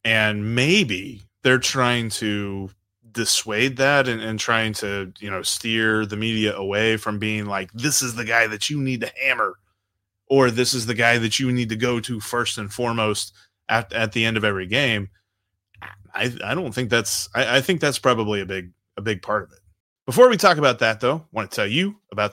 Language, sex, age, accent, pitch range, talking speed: English, male, 30-49, American, 110-150 Hz, 210 wpm